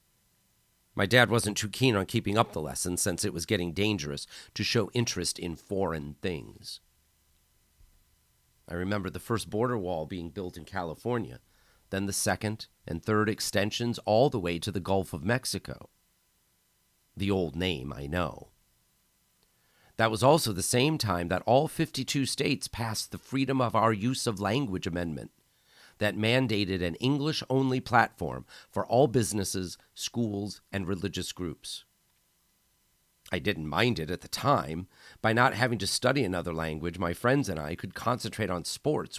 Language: English